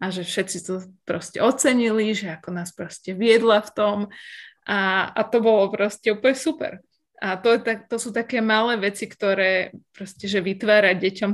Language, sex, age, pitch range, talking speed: Slovak, female, 20-39, 190-220 Hz, 180 wpm